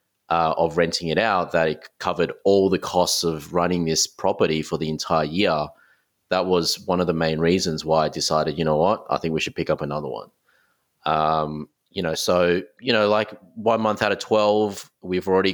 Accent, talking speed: Australian, 210 wpm